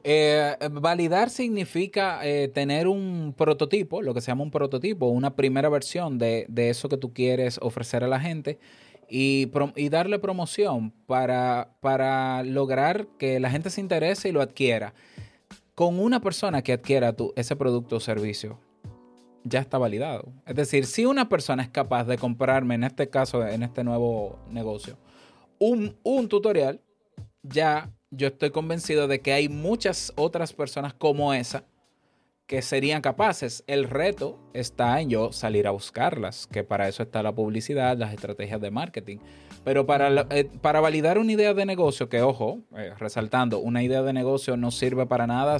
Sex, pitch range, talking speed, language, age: male, 120-165 Hz, 165 wpm, Spanish, 30-49